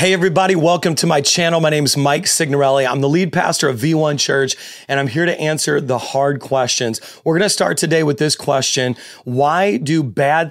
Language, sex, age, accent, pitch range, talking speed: English, male, 30-49, American, 140-165 Hz, 210 wpm